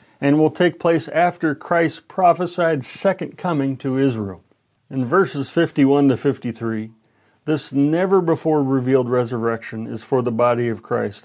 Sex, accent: male, American